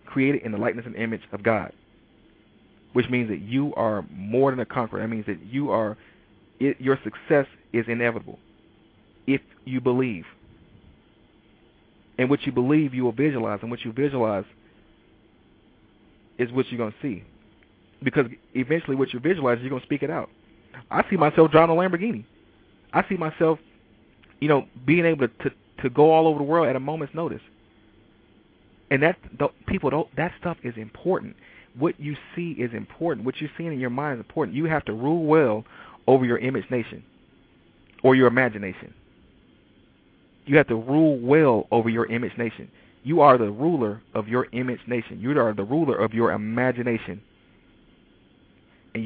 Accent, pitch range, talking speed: American, 110-145 Hz, 170 wpm